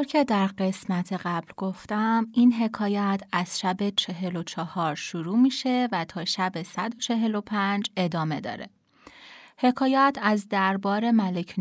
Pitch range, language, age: 180-225 Hz, Persian, 30-49